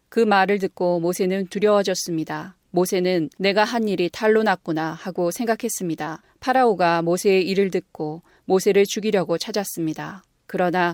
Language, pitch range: Korean, 170-205 Hz